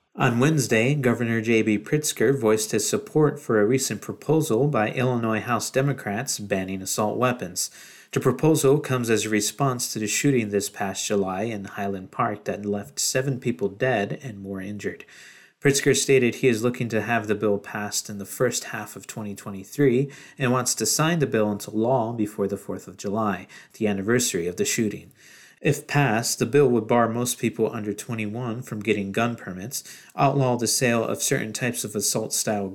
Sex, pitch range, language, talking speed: male, 105-135 Hz, English, 180 wpm